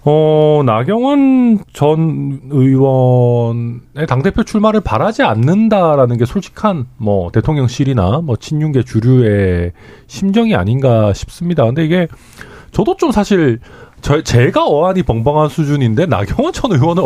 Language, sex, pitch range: Korean, male, 115-185 Hz